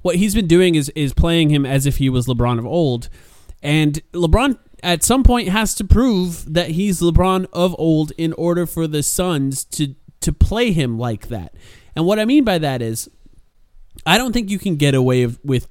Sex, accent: male, American